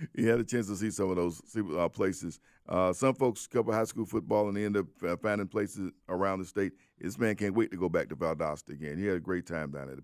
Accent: American